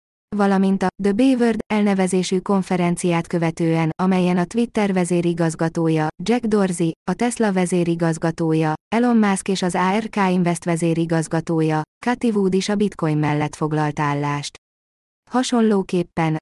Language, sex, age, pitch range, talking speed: Hungarian, female, 20-39, 165-195 Hz, 120 wpm